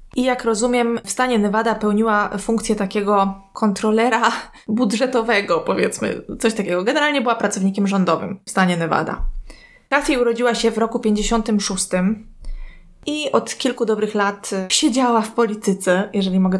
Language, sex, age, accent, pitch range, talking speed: Polish, female, 20-39, native, 200-230 Hz, 135 wpm